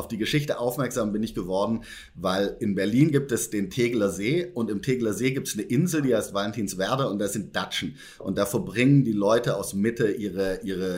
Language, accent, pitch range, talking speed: German, German, 100-120 Hz, 215 wpm